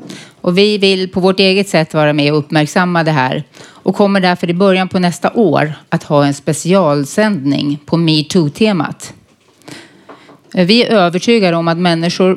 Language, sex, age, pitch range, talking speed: Swedish, female, 30-49, 145-190 Hz, 160 wpm